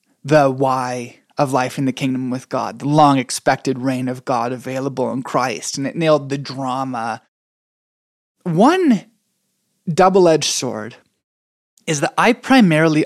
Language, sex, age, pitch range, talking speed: English, male, 20-39, 130-160 Hz, 135 wpm